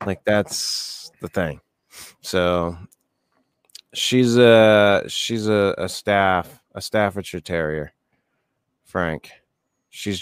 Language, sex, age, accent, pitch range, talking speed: English, male, 30-49, American, 75-90 Hz, 95 wpm